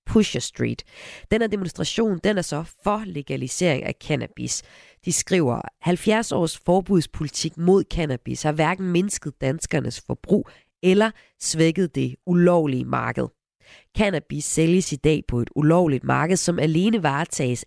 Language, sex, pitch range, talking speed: Danish, female, 140-200 Hz, 135 wpm